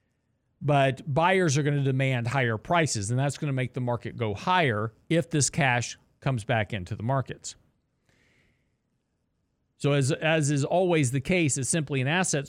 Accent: American